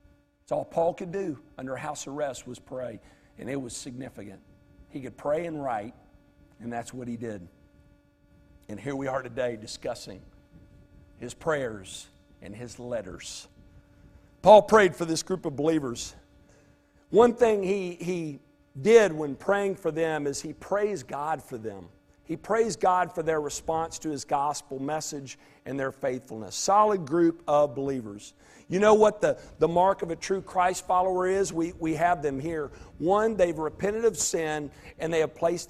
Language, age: English, 50-69